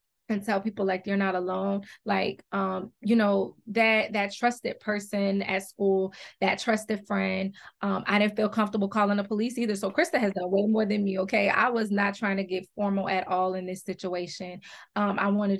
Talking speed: 205 wpm